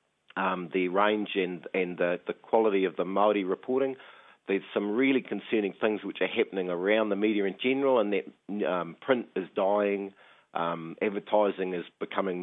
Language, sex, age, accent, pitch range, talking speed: English, male, 40-59, Australian, 90-105 Hz, 170 wpm